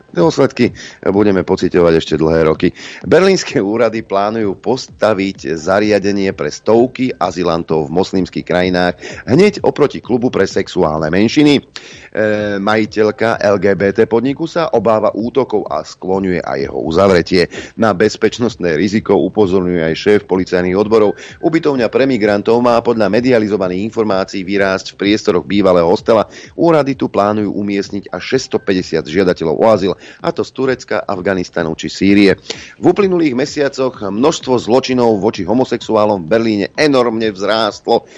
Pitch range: 90-115 Hz